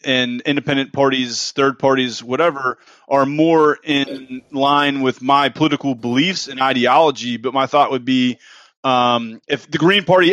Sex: male